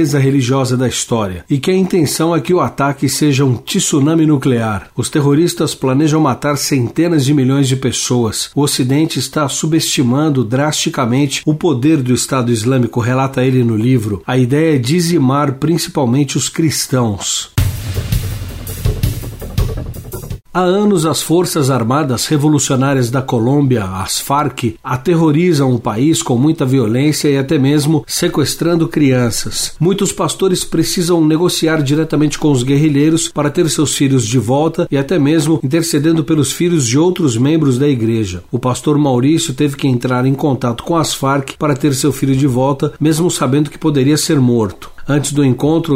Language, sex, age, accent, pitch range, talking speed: Portuguese, male, 60-79, Brazilian, 125-160 Hz, 155 wpm